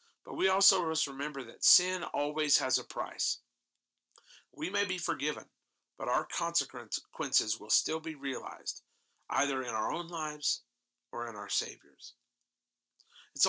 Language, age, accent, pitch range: English, 40-59, American, 135-180 Hz